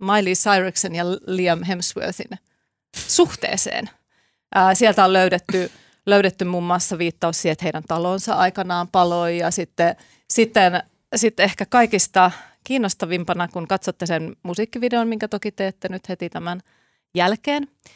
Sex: female